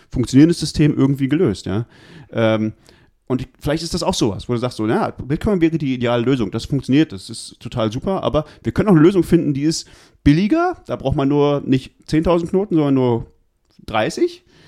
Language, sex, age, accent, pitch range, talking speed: German, male, 30-49, German, 115-165 Hz, 195 wpm